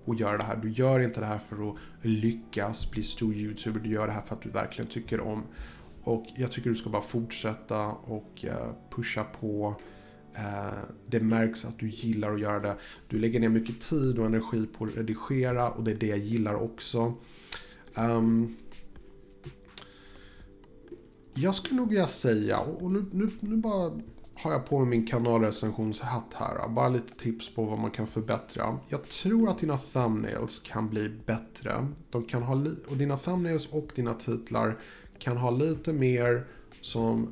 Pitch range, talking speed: 110-130 Hz, 175 wpm